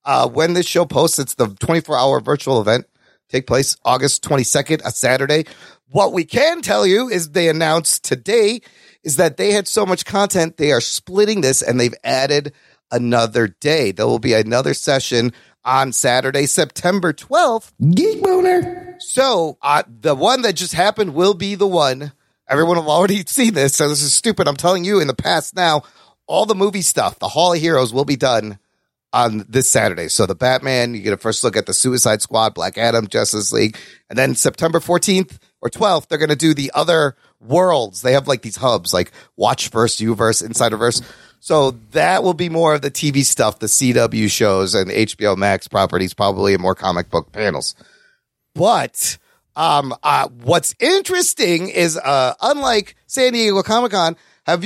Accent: American